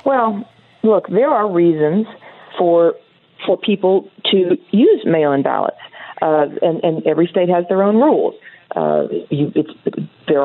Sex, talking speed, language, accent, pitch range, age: female, 145 wpm, English, American, 170-230 Hz, 40-59